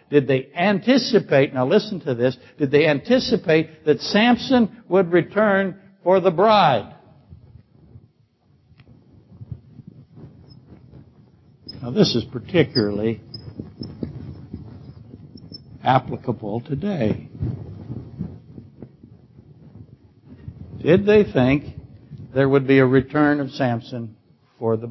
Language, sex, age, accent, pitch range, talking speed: English, male, 60-79, American, 115-150 Hz, 85 wpm